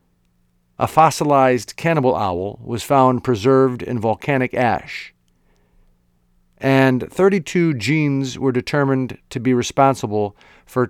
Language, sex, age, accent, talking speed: English, male, 50-69, American, 105 wpm